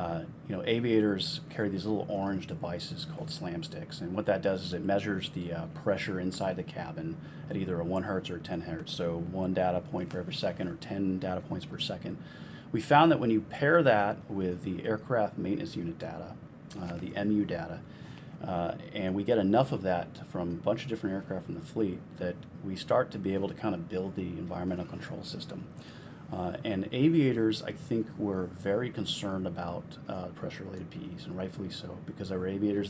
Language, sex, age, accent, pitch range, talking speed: English, male, 30-49, American, 95-115 Hz, 205 wpm